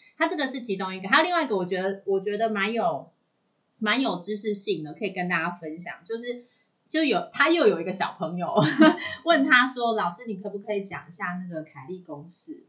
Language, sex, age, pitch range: Chinese, female, 30-49, 175-245 Hz